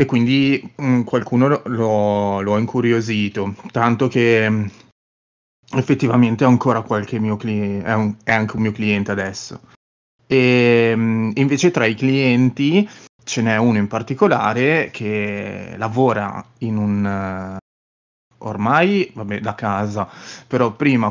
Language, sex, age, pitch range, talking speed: Italian, male, 30-49, 105-125 Hz, 130 wpm